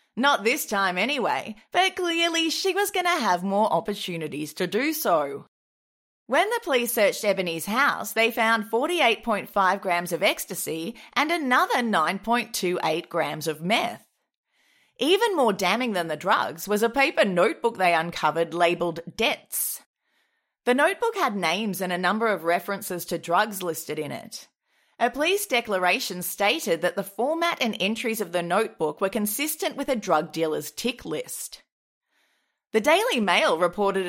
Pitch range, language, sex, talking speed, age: 180-275 Hz, English, female, 150 wpm, 30-49